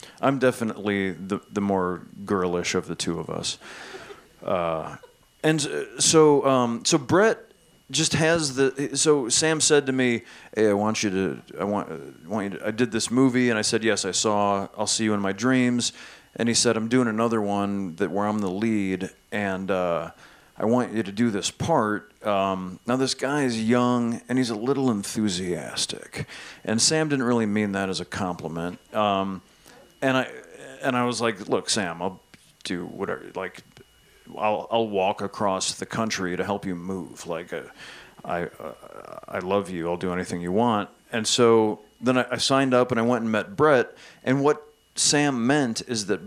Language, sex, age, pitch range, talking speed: English, male, 40-59, 100-130 Hz, 190 wpm